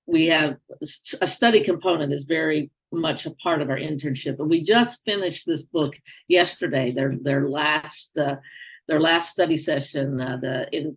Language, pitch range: English, 145-180 Hz